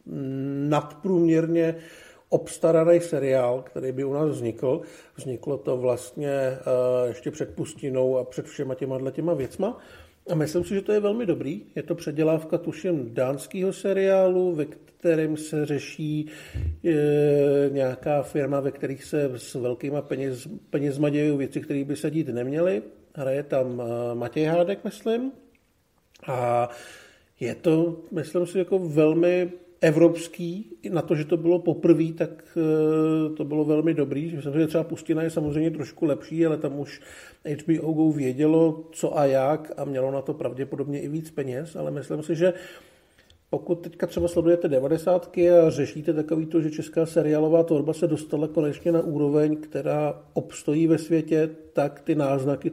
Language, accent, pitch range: Czech, native, 140-165 Hz